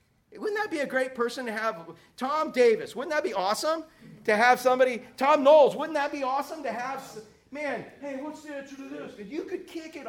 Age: 40-59